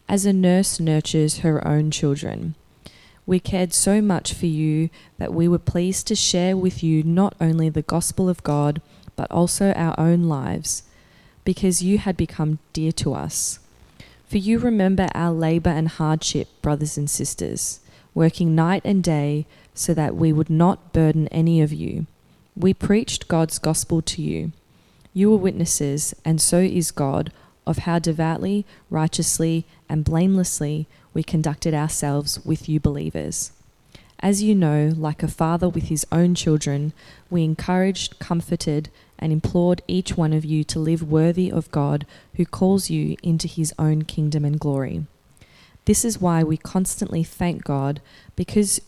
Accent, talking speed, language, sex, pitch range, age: Australian, 155 wpm, English, female, 155-180 Hz, 20-39